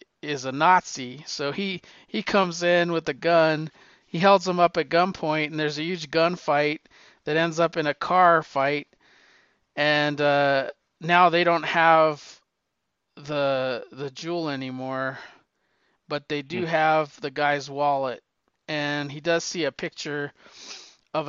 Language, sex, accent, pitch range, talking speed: English, male, American, 140-170 Hz, 150 wpm